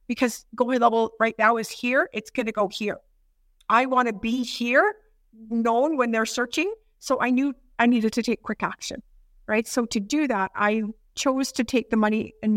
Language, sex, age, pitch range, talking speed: English, female, 50-69, 215-255 Hz, 190 wpm